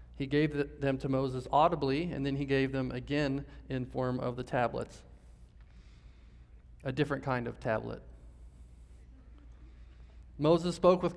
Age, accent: 40-59, American